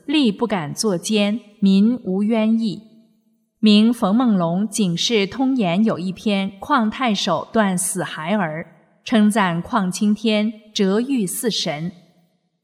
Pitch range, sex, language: 185-230 Hz, female, Chinese